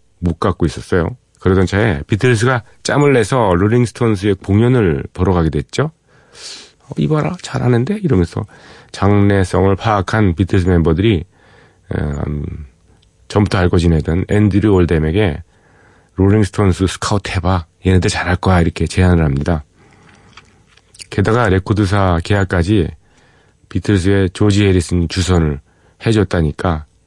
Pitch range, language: 90-115 Hz, Korean